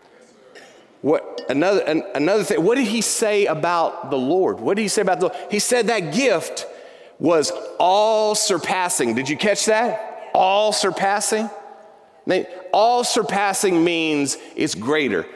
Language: English